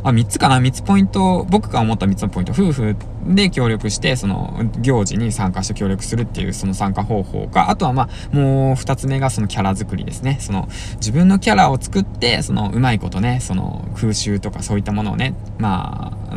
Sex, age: male, 20-39